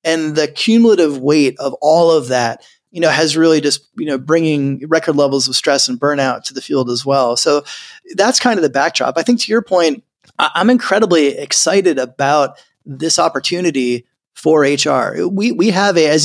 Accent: American